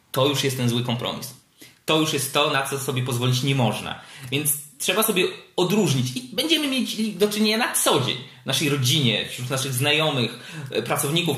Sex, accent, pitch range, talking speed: male, native, 130-165 Hz, 180 wpm